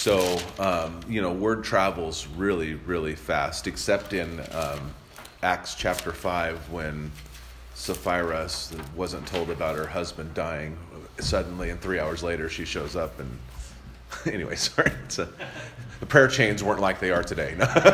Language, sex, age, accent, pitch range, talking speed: English, male, 40-59, American, 80-110 Hz, 145 wpm